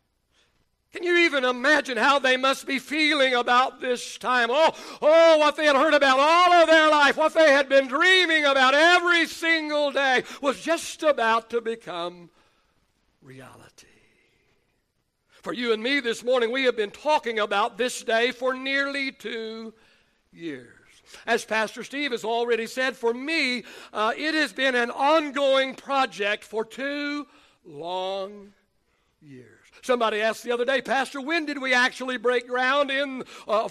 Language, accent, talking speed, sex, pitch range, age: English, American, 155 wpm, male, 225-290 Hz, 60-79